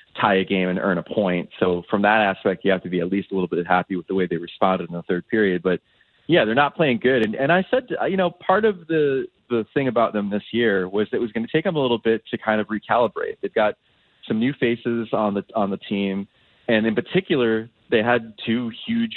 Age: 20-39